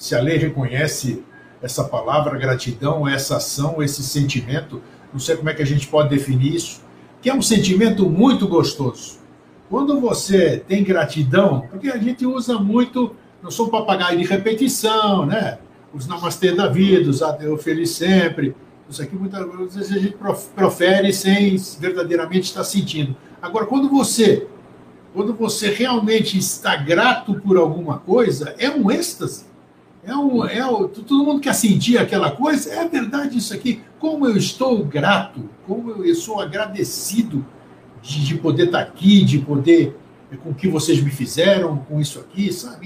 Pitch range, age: 150-220 Hz, 60-79